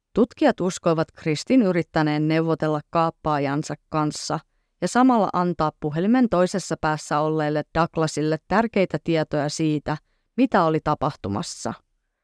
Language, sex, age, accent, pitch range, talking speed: Finnish, female, 30-49, native, 155-190 Hz, 105 wpm